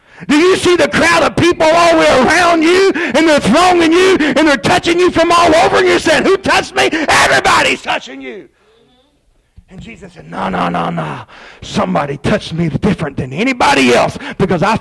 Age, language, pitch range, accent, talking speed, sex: 50-69, English, 220-295 Hz, American, 195 wpm, male